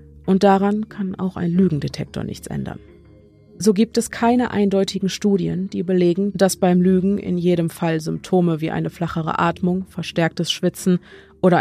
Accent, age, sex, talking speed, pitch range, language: German, 30-49, female, 155 wpm, 160-190 Hz, German